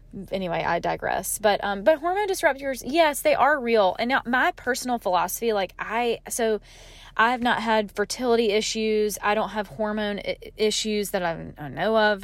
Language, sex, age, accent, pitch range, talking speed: English, female, 20-39, American, 185-230 Hz, 180 wpm